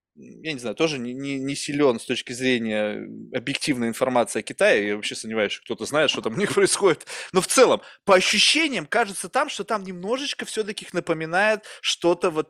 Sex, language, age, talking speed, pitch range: male, Russian, 20-39, 190 wpm, 150-230 Hz